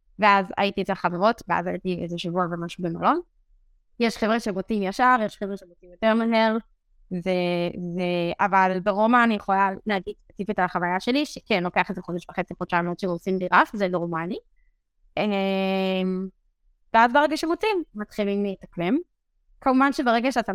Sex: female